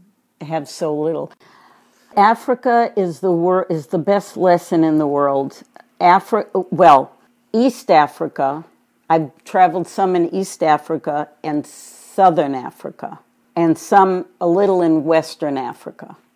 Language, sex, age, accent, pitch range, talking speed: English, female, 60-79, American, 165-225 Hz, 125 wpm